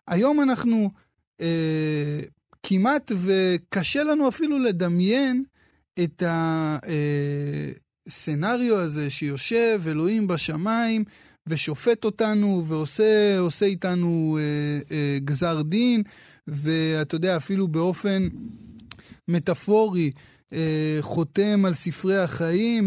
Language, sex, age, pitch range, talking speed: Hebrew, male, 20-39, 155-210 Hz, 85 wpm